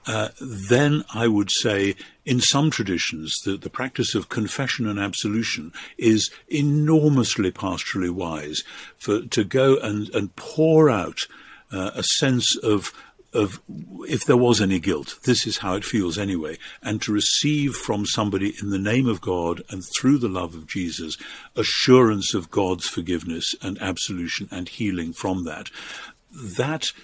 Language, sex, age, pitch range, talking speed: English, male, 50-69, 90-115 Hz, 155 wpm